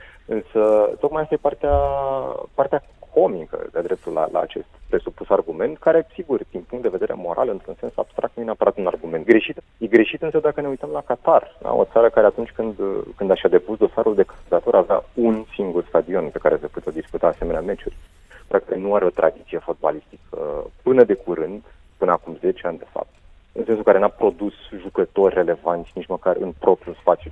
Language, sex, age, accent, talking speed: Romanian, male, 30-49, native, 195 wpm